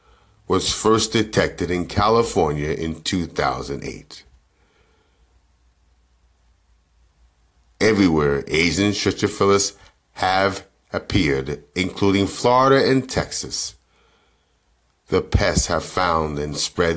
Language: English